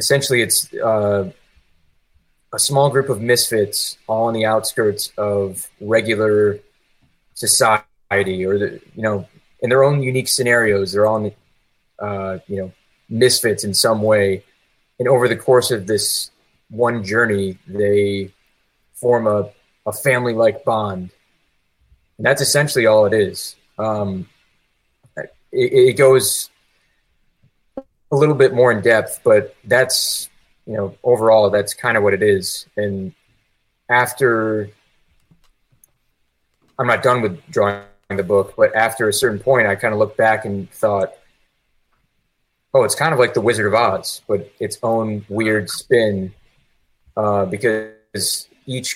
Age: 20-39